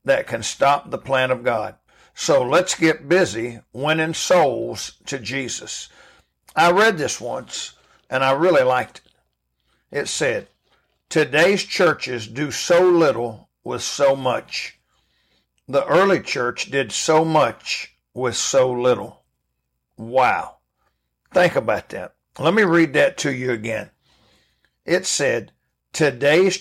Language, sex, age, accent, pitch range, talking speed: English, male, 60-79, American, 120-165 Hz, 130 wpm